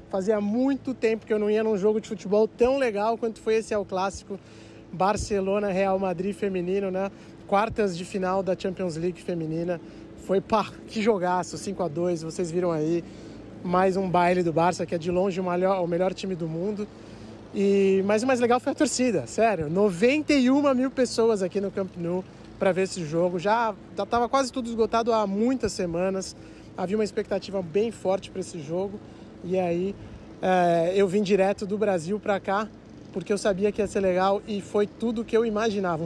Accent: Brazilian